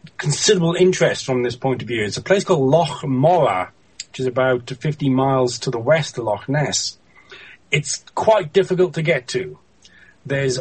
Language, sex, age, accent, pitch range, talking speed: English, male, 40-59, British, 125-155 Hz, 175 wpm